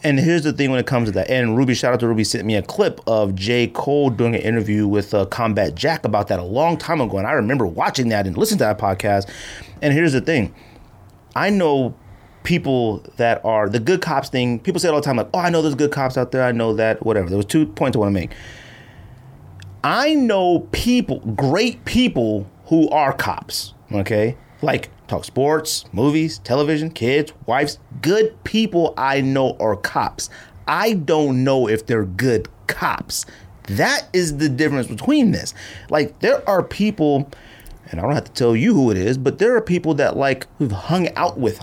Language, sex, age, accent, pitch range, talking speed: English, male, 30-49, American, 110-155 Hz, 210 wpm